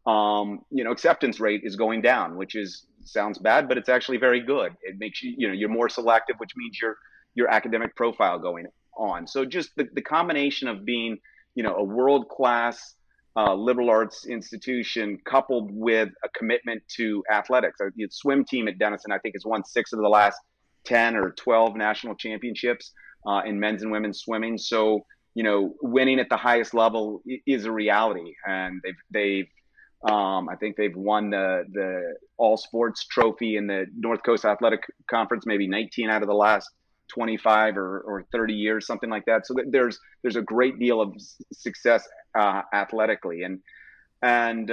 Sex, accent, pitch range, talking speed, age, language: male, American, 105-125 Hz, 180 wpm, 30-49, English